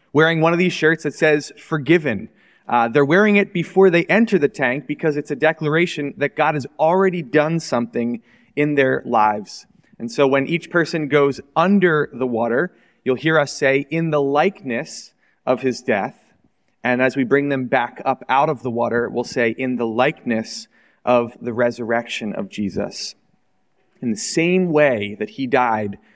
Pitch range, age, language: 120-165 Hz, 30-49, English